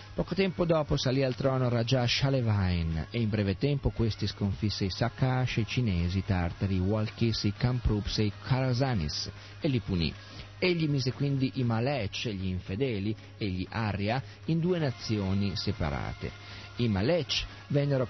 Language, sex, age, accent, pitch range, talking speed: Italian, male, 40-59, native, 100-130 Hz, 155 wpm